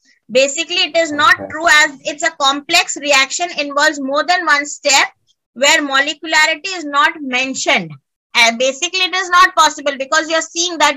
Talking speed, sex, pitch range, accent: 170 wpm, female, 295-360 Hz, Indian